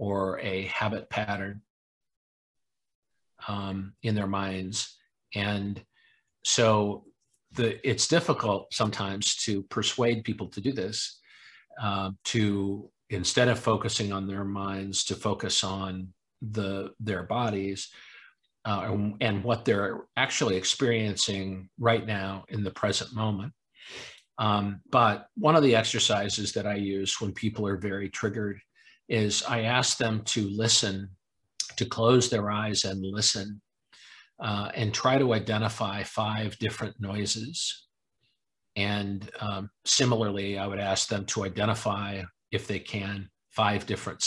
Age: 50-69